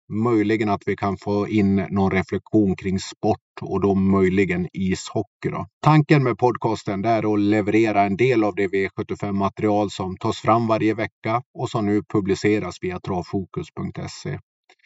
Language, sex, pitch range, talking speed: Swedish, male, 100-120 Hz, 145 wpm